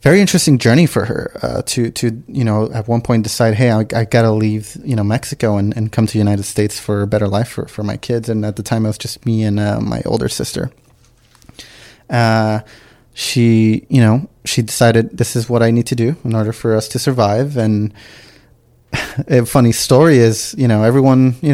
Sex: male